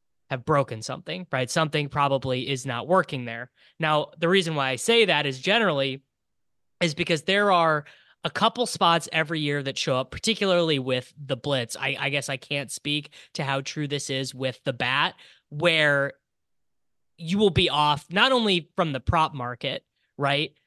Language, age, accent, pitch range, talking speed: English, 20-39, American, 130-160 Hz, 175 wpm